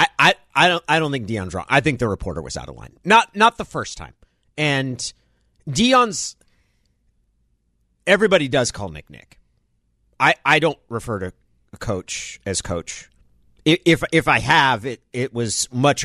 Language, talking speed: English, 170 wpm